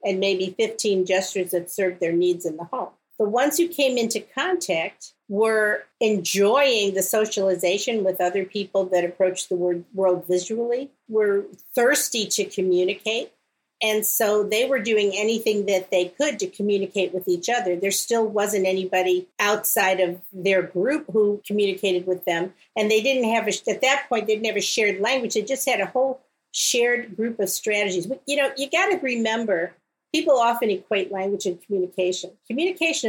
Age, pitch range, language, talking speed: 50-69, 190-230 Hz, English, 165 wpm